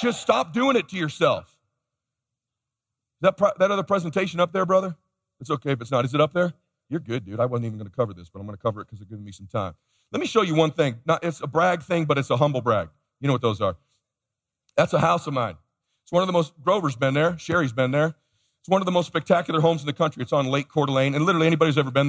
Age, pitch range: 40-59, 130-175 Hz